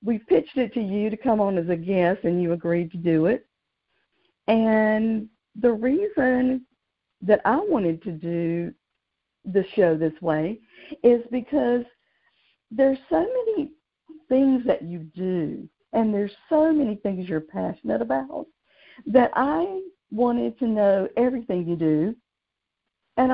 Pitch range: 195-250 Hz